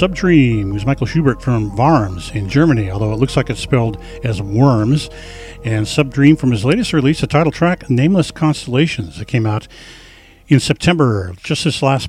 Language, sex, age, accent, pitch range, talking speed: English, male, 50-69, American, 110-145 Hz, 175 wpm